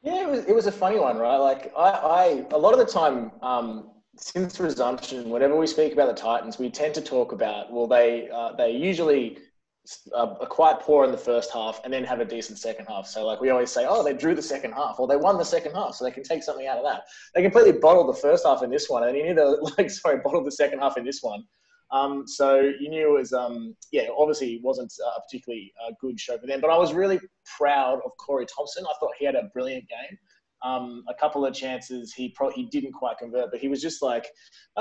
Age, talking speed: 20-39, 250 wpm